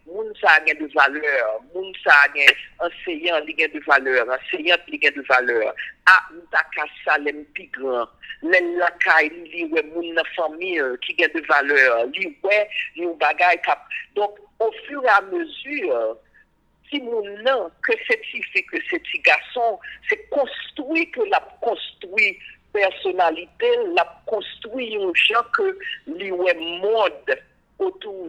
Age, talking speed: 50-69, 145 wpm